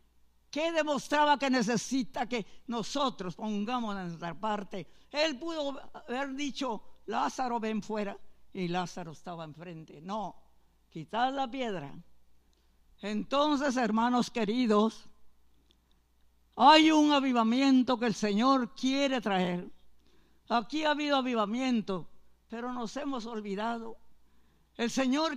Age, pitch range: 60-79, 175-270 Hz